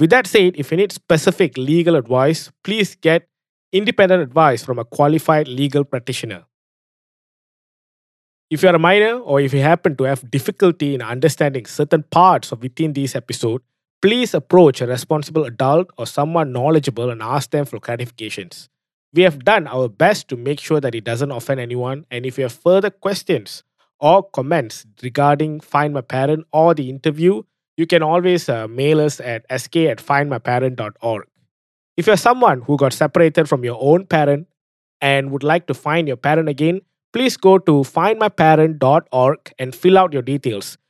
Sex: male